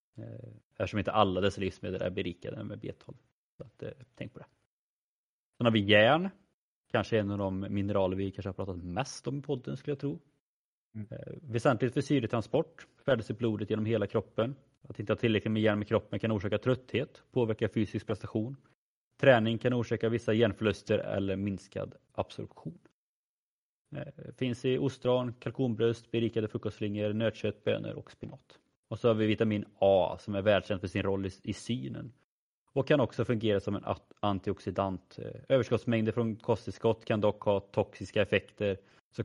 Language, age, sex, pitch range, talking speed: Swedish, 30-49, male, 100-120 Hz, 170 wpm